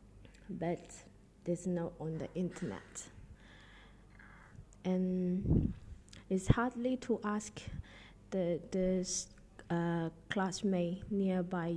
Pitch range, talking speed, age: 145-195 Hz, 80 wpm, 20-39